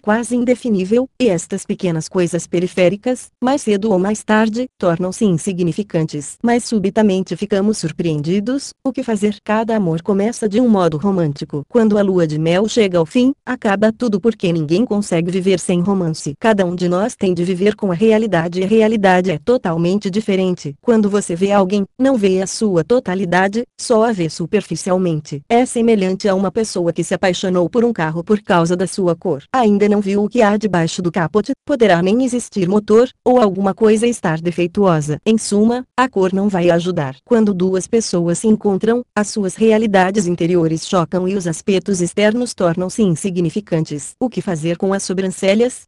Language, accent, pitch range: Portuguese, Brazilian, 180-220 Hz